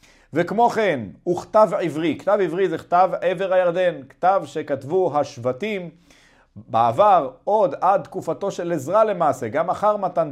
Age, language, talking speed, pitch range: 40-59, Hebrew, 135 wpm, 135-175 Hz